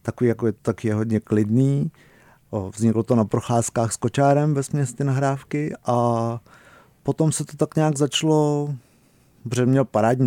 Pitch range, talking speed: 120-140 Hz, 160 wpm